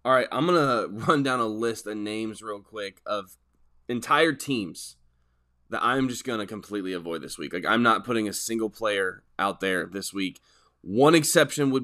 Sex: male